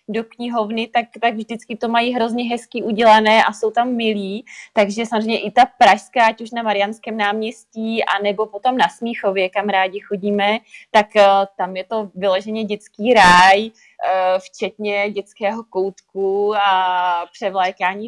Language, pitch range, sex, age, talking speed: Czech, 195-230 Hz, female, 20-39, 145 wpm